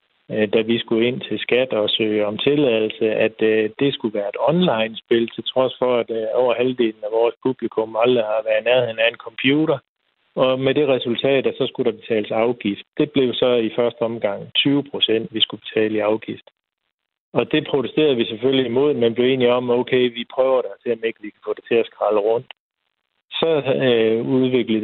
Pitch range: 110-135 Hz